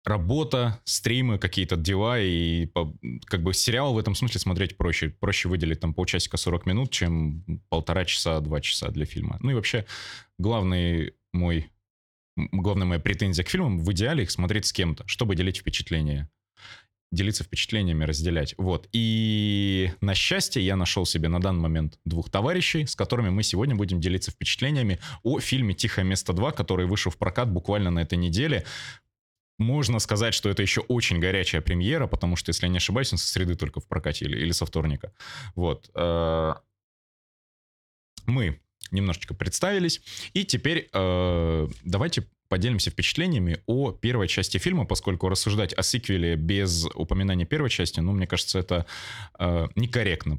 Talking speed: 155 wpm